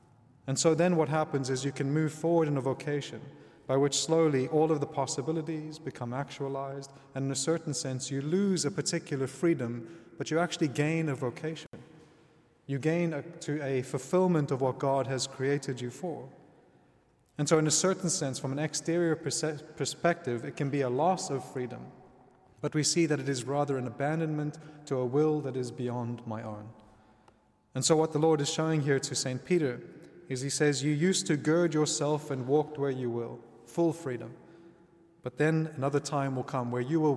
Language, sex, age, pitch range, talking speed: English, male, 30-49, 130-155 Hz, 190 wpm